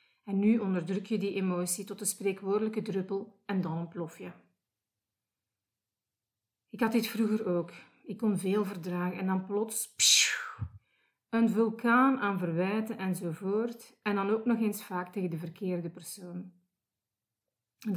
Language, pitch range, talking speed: Dutch, 170-215 Hz, 145 wpm